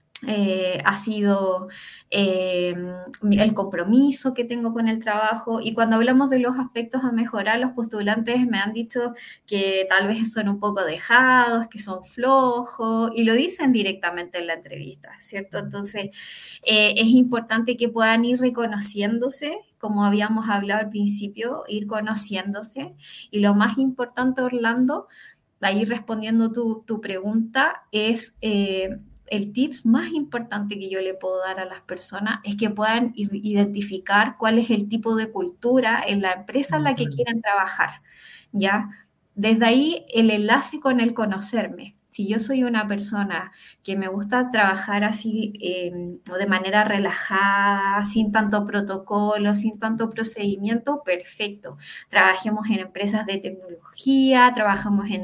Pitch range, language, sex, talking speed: 200-240 Hz, Spanish, female, 145 wpm